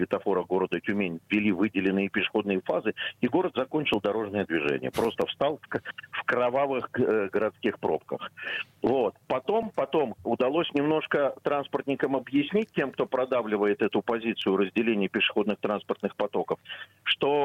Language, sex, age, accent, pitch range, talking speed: Russian, male, 50-69, native, 110-145 Hz, 120 wpm